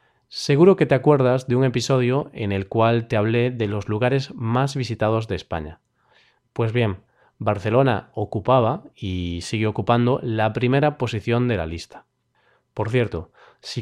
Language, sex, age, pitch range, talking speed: Spanish, male, 20-39, 110-145 Hz, 150 wpm